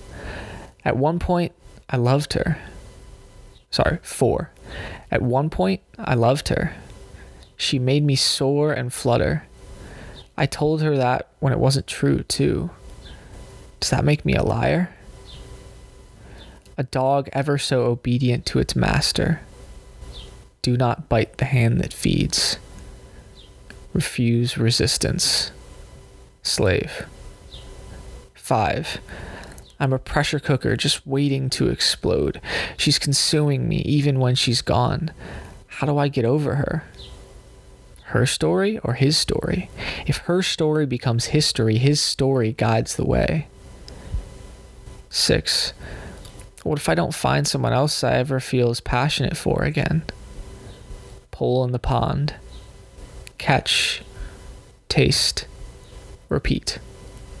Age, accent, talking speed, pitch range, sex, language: 20-39, American, 115 wpm, 120-150 Hz, male, English